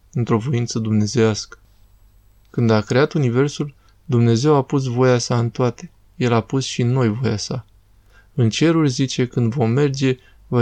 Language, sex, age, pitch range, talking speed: Romanian, male, 20-39, 110-130 Hz, 160 wpm